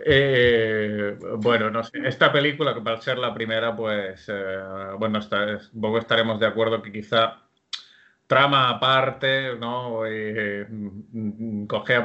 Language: Spanish